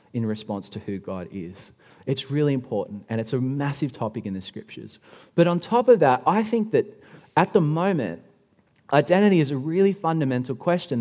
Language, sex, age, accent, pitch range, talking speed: English, male, 30-49, Australian, 115-160 Hz, 185 wpm